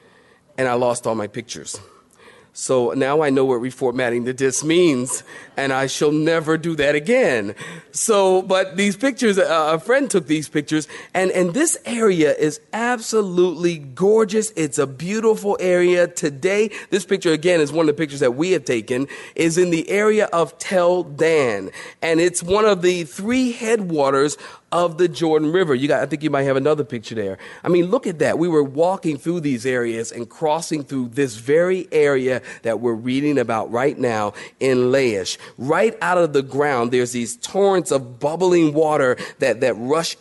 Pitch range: 135-185 Hz